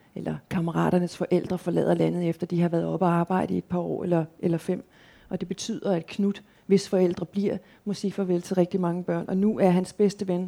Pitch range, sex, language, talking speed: 180-210 Hz, female, Danish, 230 wpm